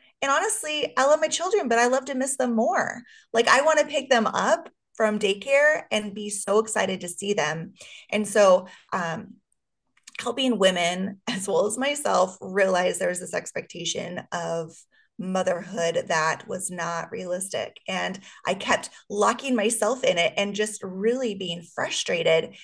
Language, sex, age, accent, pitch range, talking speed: English, female, 20-39, American, 185-240 Hz, 160 wpm